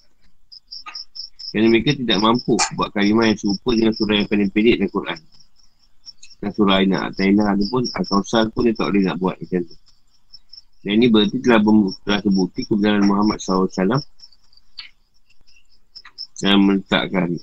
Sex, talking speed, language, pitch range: male, 135 wpm, Malay, 95-110 Hz